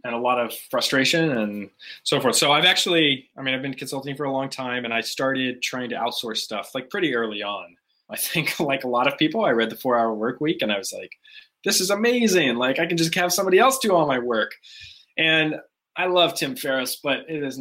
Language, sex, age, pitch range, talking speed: English, male, 20-39, 115-150 Hz, 240 wpm